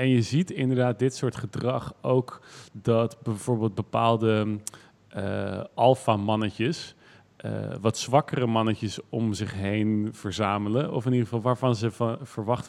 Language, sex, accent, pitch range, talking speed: Dutch, male, Dutch, 110-125 Hz, 135 wpm